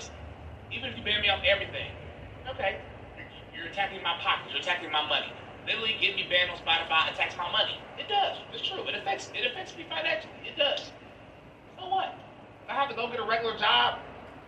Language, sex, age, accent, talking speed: English, male, 30-49, American, 200 wpm